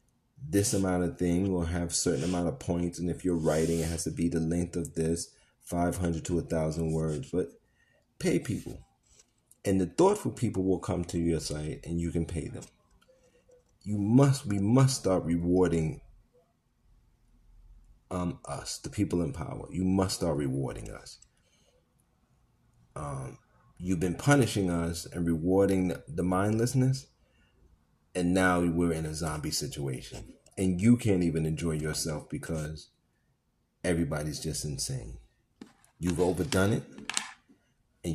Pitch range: 80-95 Hz